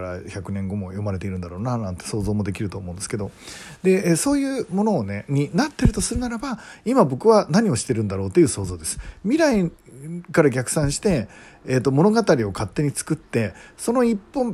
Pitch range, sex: 105-175 Hz, male